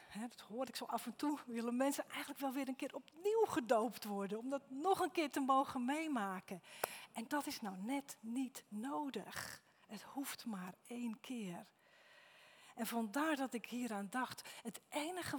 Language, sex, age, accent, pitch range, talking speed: Dutch, female, 40-59, Dutch, 230-295 Hz, 175 wpm